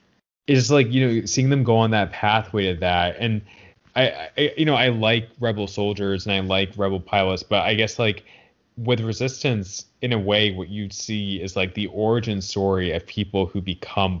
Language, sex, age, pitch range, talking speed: English, male, 20-39, 95-115 Hz, 200 wpm